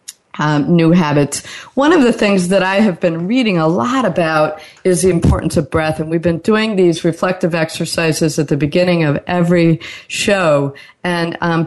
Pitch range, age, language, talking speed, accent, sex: 165-210 Hz, 50-69, English, 180 wpm, American, female